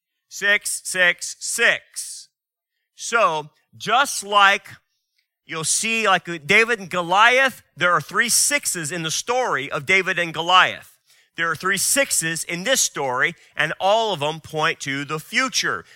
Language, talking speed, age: English, 145 wpm, 40-59